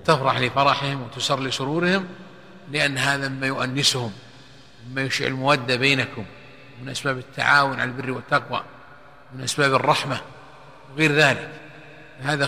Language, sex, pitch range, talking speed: Arabic, male, 135-155 Hz, 115 wpm